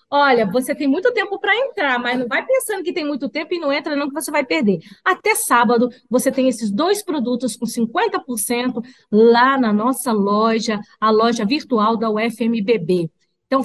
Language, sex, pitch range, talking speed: Portuguese, female, 225-310 Hz, 185 wpm